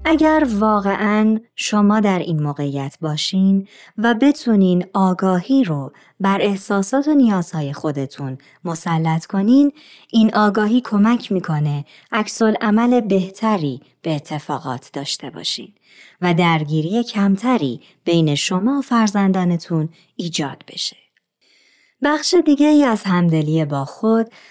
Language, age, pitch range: Persian, 30-49, 160-235 Hz